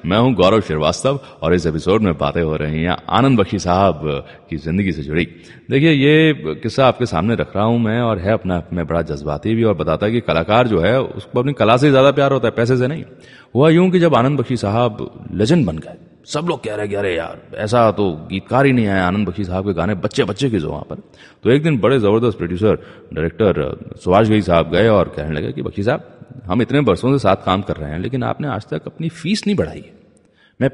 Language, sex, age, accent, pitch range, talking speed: Gujarati, male, 30-49, native, 95-130 Hz, 185 wpm